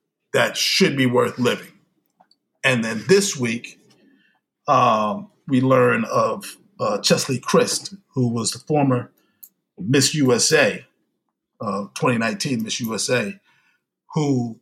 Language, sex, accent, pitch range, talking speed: English, male, American, 120-155 Hz, 110 wpm